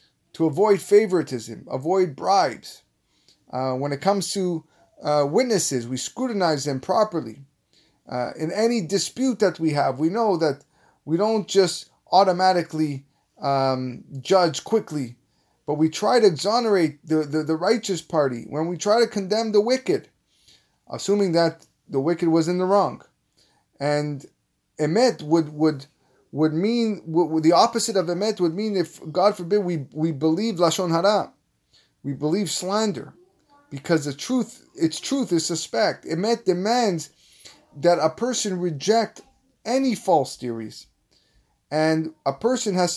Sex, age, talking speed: male, 30-49, 145 wpm